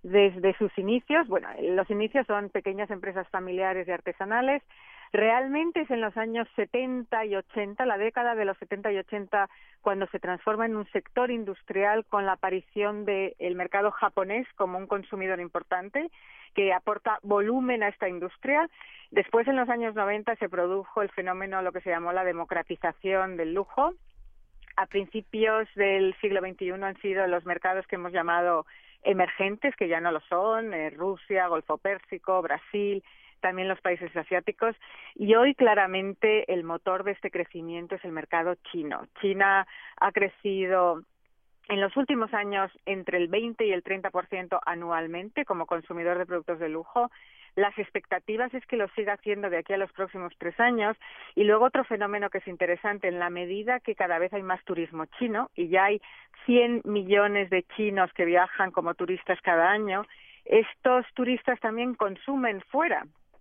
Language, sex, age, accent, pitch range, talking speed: Spanish, female, 40-59, Spanish, 185-220 Hz, 165 wpm